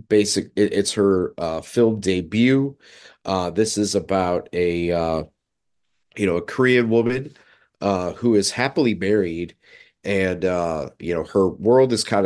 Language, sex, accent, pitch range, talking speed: English, male, American, 85-105 Hz, 145 wpm